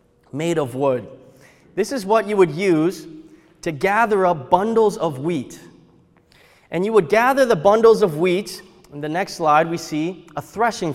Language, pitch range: English, 155-205 Hz